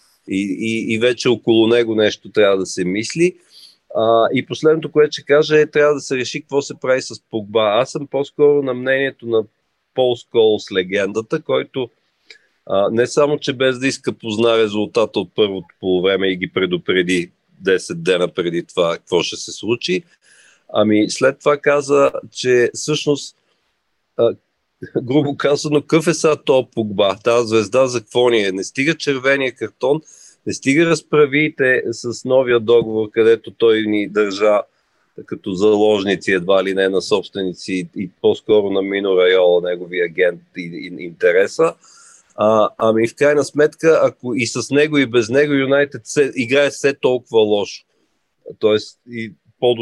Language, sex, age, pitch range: Bulgarian, male, 40-59, 105-145 Hz